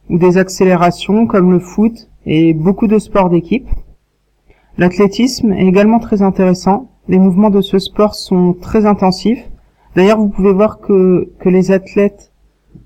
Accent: French